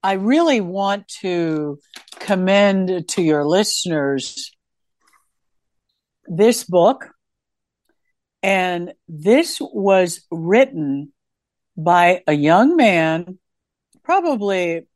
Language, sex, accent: English, female, American